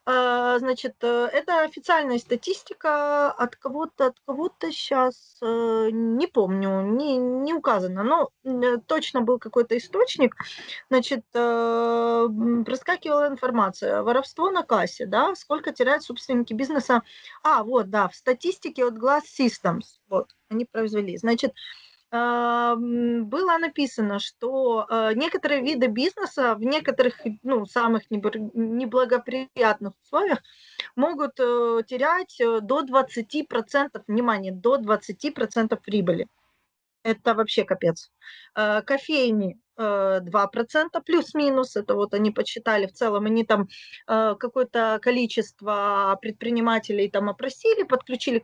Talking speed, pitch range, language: 100 wpm, 225-280 Hz, Russian